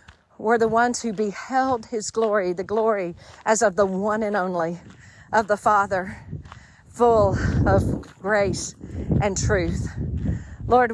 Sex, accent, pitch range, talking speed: female, American, 195-225 Hz, 130 wpm